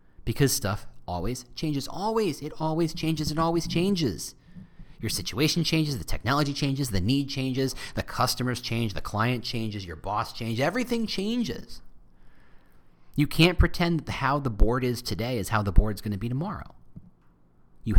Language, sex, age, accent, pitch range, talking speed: English, male, 30-49, American, 105-155 Hz, 165 wpm